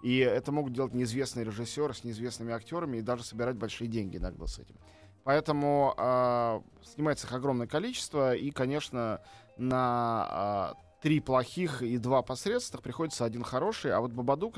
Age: 20-39